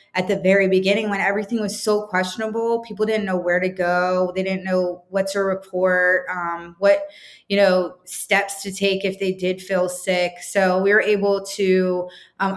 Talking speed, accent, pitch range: 185 wpm, American, 185-205 Hz